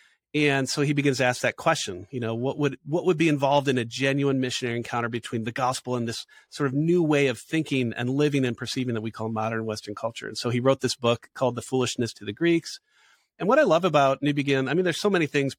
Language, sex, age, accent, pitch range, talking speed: English, male, 40-59, American, 125-160 Hz, 260 wpm